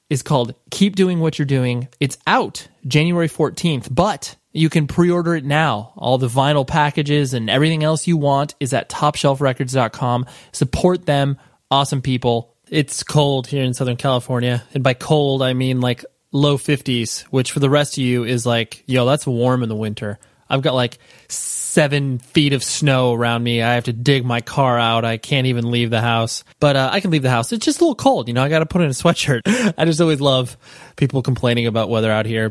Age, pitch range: 20-39, 120-155 Hz